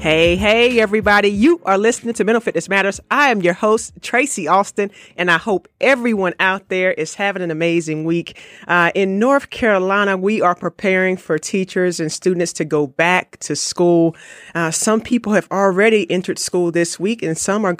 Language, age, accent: English, 30-49, American